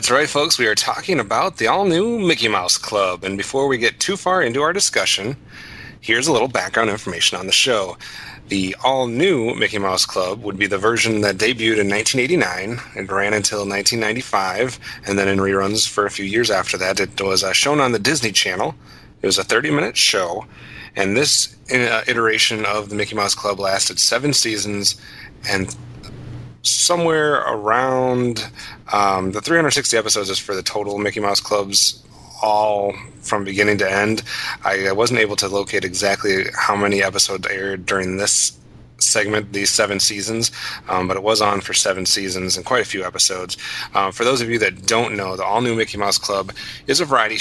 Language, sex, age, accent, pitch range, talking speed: English, male, 30-49, American, 100-115 Hz, 185 wpm